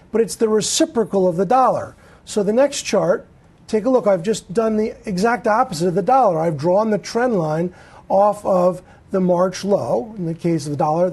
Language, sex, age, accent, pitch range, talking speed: English, male, 40-59, American, 180-220 Hz, 210 wpm